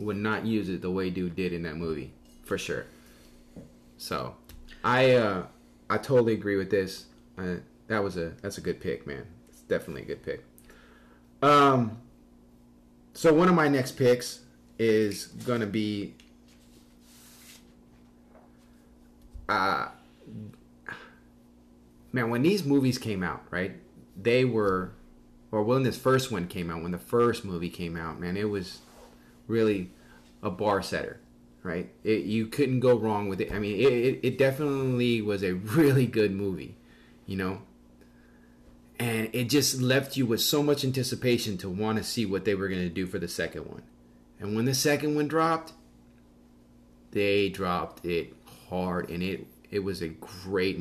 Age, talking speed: 30-49, 160 wpm